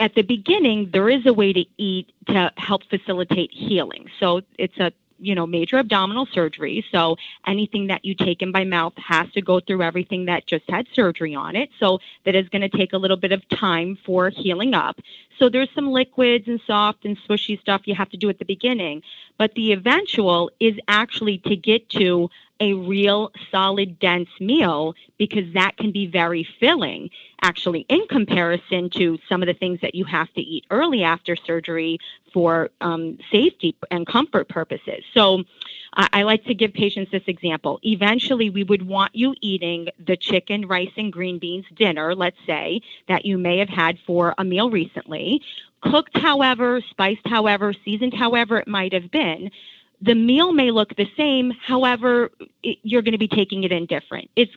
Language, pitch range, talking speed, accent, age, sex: English, 180-220 Hz, 185 wpm, American, 40-59, female